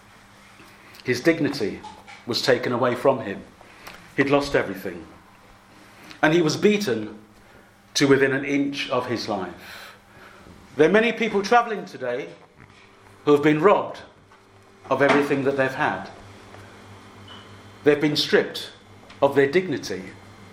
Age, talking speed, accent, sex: 50-69, 125 wpm, British, male